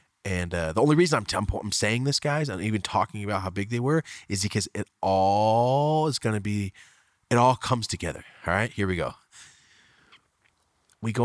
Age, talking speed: 30-49, 195 wpm